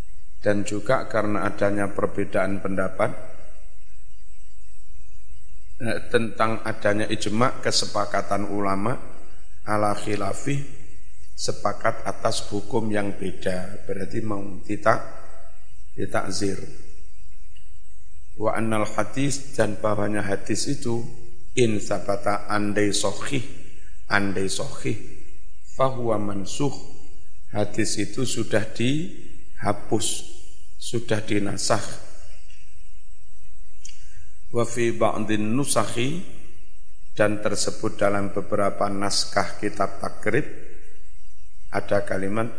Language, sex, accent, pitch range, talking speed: Indonesian, male, native, 95-110 Hz, 70 wpm